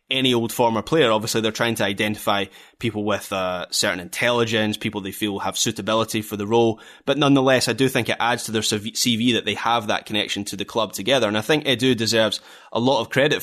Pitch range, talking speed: 110-130 Hz, 225 wpm